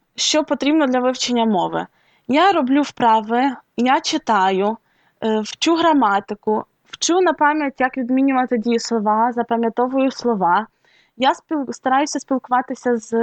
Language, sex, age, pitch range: Ukrainian, female, 20-39, 225-270 Hz